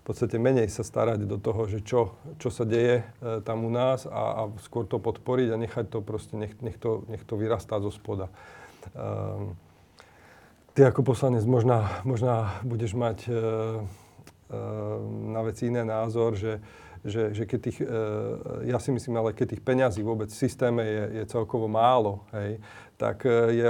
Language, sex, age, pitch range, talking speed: Slovak, male, 40-59, 110-120 Hz, 170 wpm